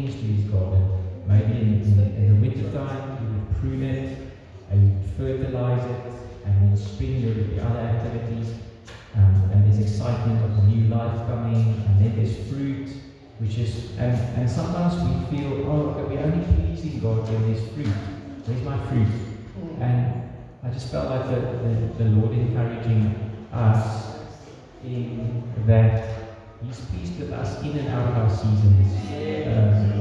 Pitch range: 105-125 Hz